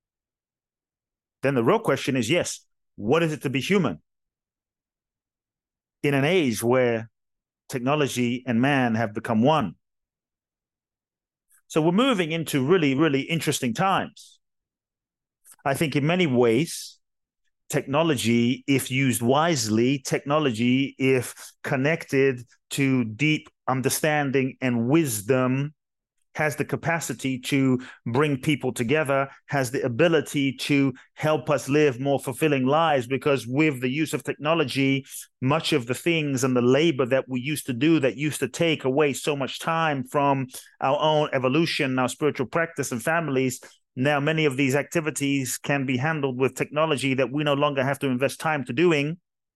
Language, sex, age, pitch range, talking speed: English, male, 40-59, 130-155 Hz, 145 wpm